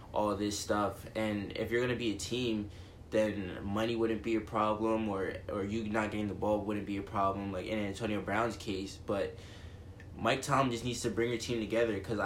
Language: English